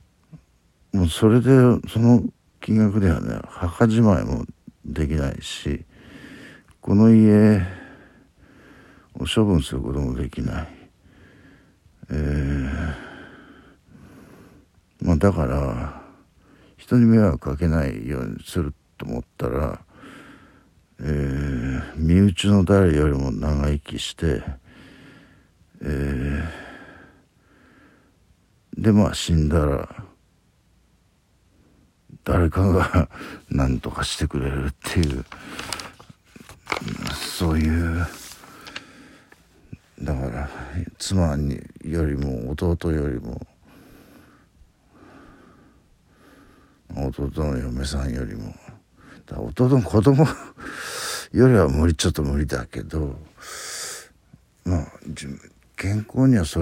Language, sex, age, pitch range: Japanese, male, 60-79, 70-95 Hz